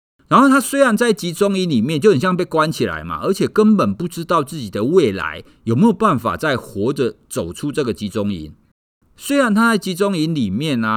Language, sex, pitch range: Chinese, male, 120-195 Hz